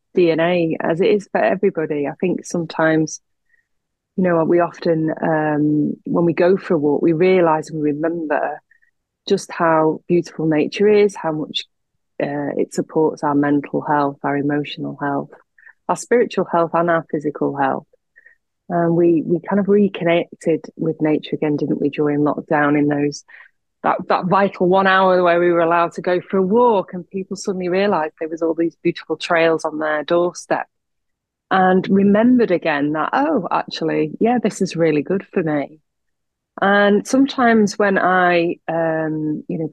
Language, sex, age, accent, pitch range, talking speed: English, female, 30-49, British, 150-180 Hz, 170 wpm